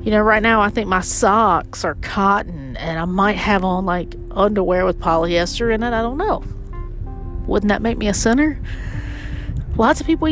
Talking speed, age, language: 190 wpm, 40-59, English